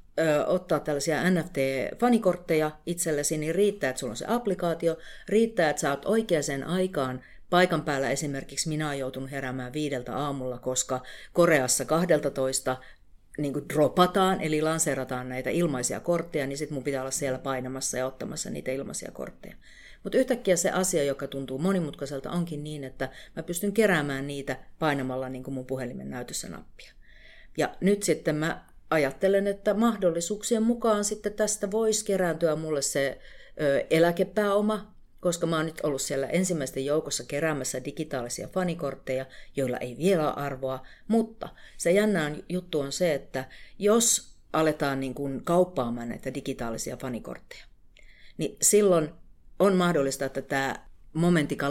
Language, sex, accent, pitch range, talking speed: Finnish, female, native, 135-180 Hz, 140 wpm